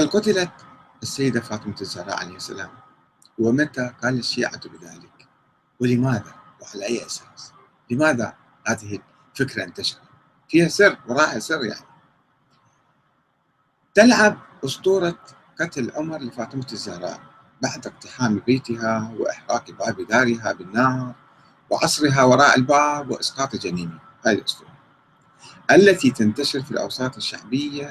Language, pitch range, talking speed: Arabic, 115-160 Hz, 105 wpm